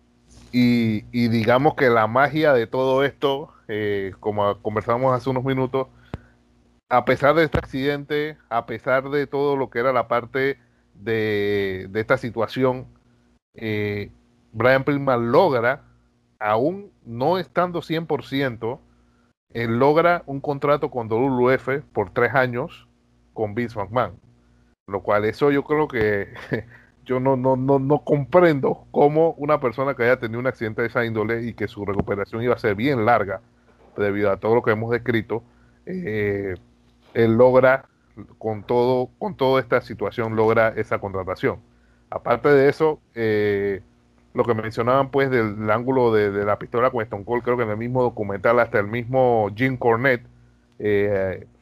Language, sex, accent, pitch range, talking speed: Spanish, male, American, 105-130 Hz, 155 wpm